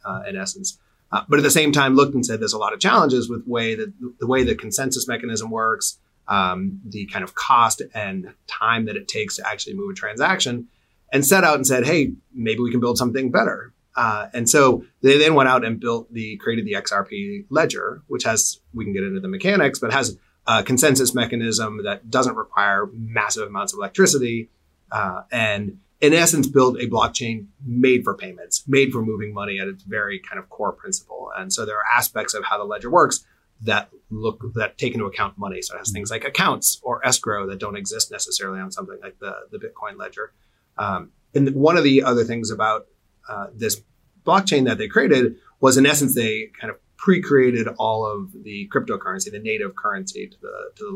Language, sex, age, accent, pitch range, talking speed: English, male, 30-49, American, 110-165 Hz, 205 wpm